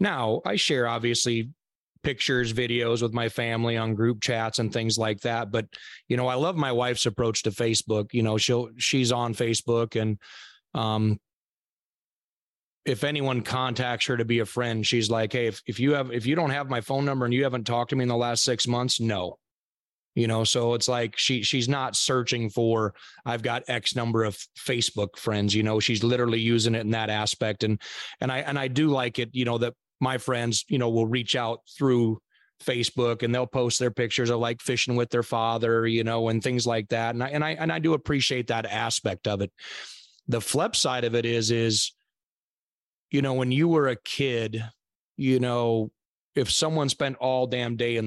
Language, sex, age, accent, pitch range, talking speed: English, male, 30-49, American, 115-125 Hz, 205 wpm